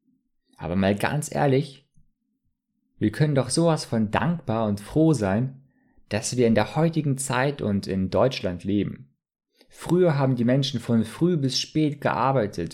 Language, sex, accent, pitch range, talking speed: German, male, German, 100-135 Hz, 150 wpm